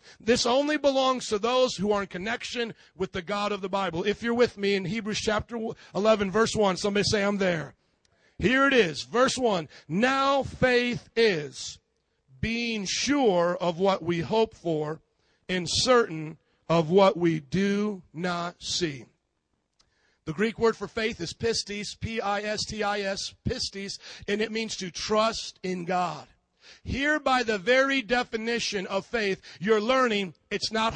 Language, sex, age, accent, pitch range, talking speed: English, male, 50-69, American, 195-250 Hz, 155 wpm